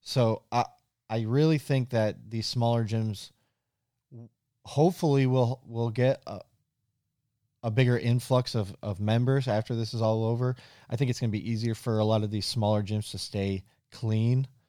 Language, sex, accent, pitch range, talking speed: English, male, American, 105-125 Hz, 175 wpm